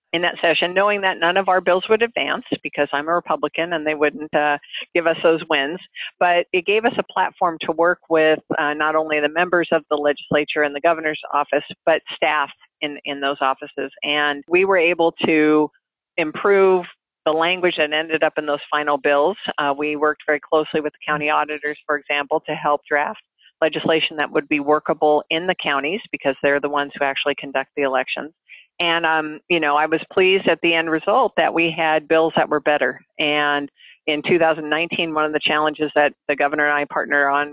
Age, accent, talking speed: 50-69, American, 205 wpm